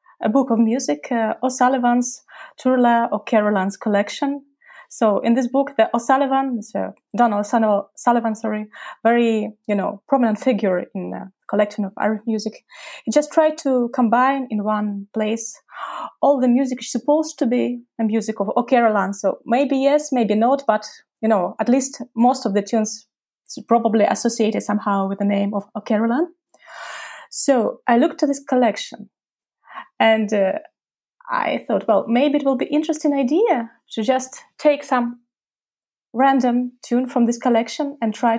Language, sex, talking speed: English, female, 150 wpm